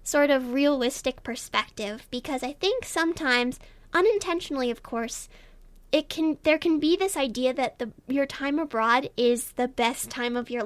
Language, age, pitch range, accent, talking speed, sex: English, 10-29, 250-320 Hz, American, 160 wpm, female